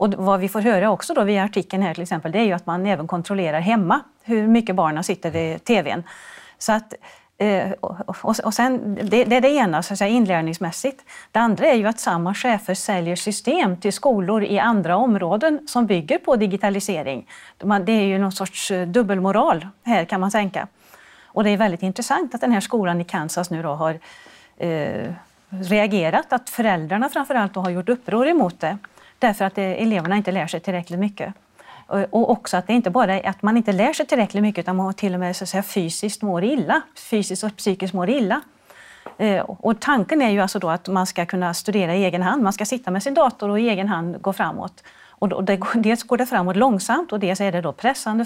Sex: female